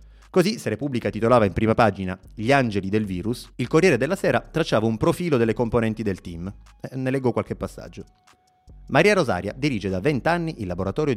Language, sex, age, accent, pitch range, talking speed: Italian, male, 30-49, native, 95-135 Hz, 175 wpm